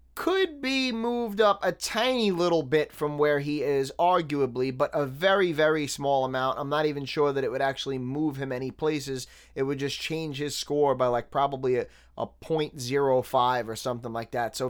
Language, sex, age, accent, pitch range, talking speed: English, male, 20-39, American, 130-185 Hz, 195 wpm